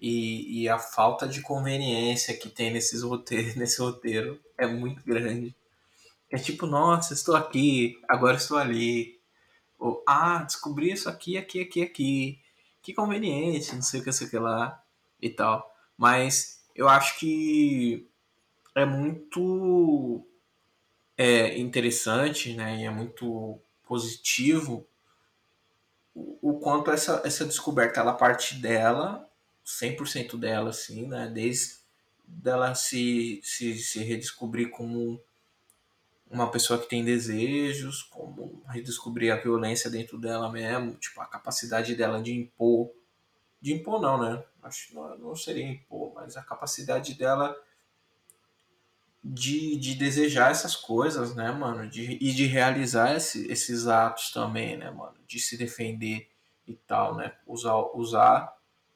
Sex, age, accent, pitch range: male, 20-39, Brazilian, 115-140 Hz